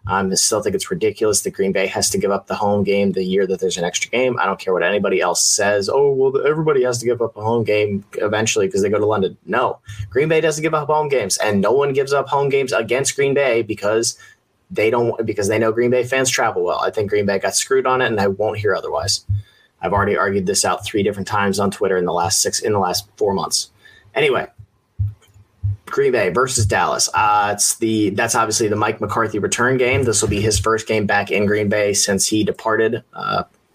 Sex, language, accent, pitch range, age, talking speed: male, English, American, 100-125 Hz, 20-39, 240 wpm